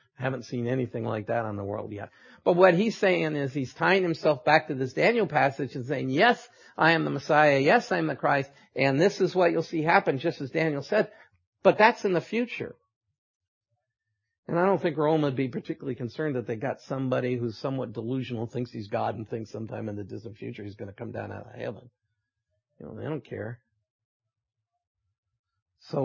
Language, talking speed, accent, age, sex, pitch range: English, 205 wpm, American, 50-69, male, 115-155 Hz